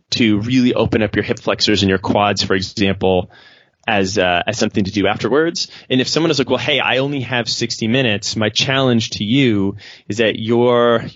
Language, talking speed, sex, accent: English, 205 wpm, male, American